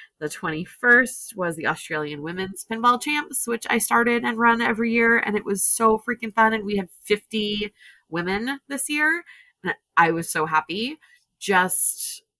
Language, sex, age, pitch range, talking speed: English, female, 20-39, 150-210 Hz, 165 wpm